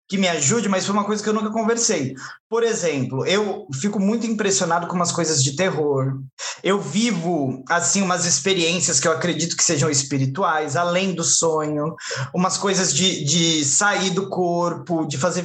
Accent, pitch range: Brazilian, 160-195 Hz